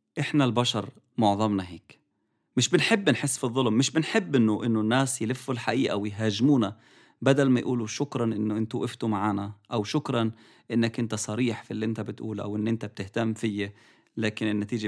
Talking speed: 165 wpm